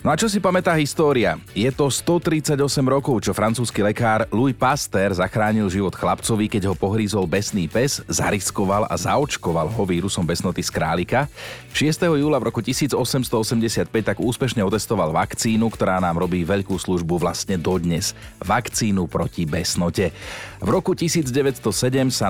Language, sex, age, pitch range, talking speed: Slovak, male, 30-49, 95-125 Hz, 145 wpm